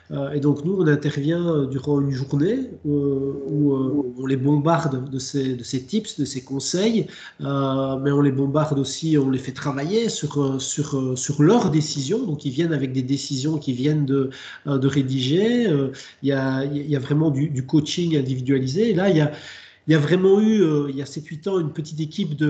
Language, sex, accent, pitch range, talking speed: French, male, French, 140-165 Hz, 195 wpm